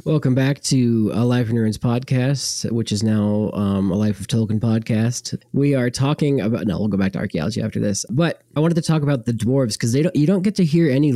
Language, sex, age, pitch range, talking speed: English, male, 20-39, 110-145 Hz, 245 wpm